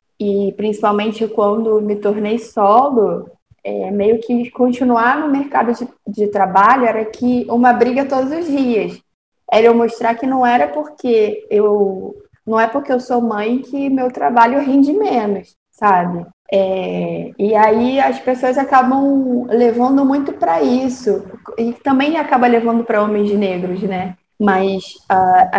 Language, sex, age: Portuguese, female, 20-39